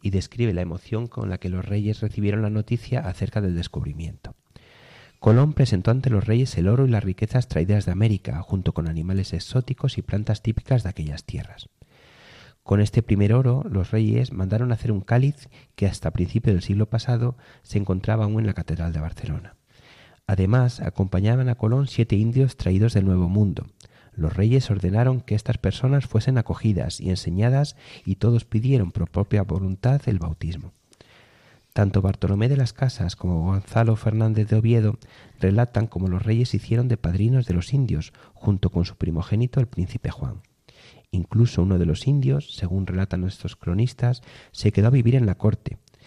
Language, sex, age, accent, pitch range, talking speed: Spanish, male, 30-49, Spanish, 95-120 Hz, 175 wpm